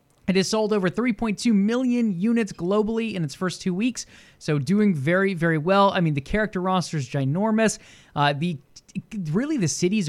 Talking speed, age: 180 wpm, 20-39